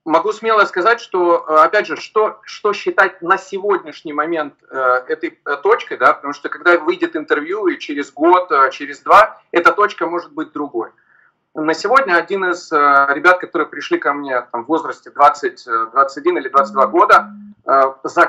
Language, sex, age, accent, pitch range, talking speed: Russian, male, 30-49, native, 140-215 Hz, 150 wpm